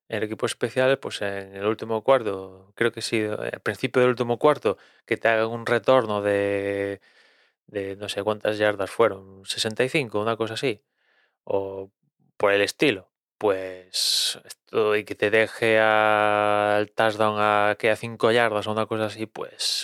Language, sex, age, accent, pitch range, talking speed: Spanish, male, 20-39, Spanish, 105-120 Hz, 165 wpm